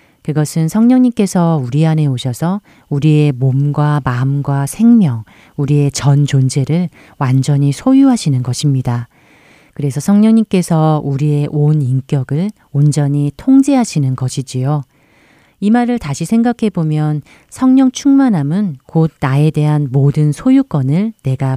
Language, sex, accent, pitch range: Korean, female, native, 140-190 Hz